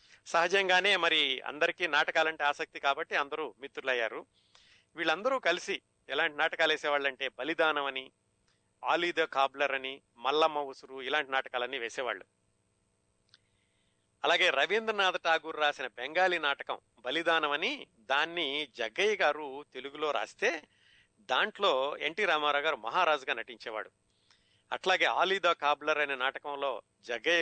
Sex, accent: male, native